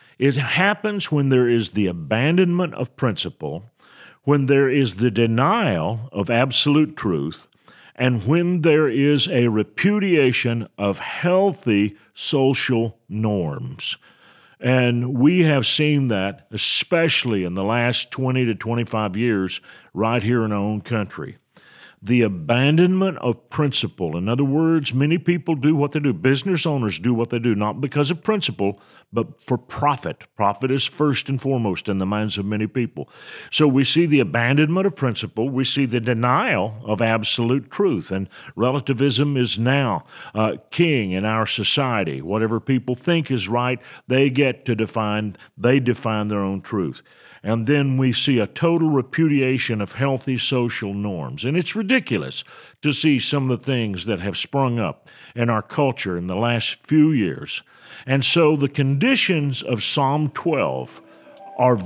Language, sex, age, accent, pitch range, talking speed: English, male, 50-69, American, 115-145 Hz, 155 wpm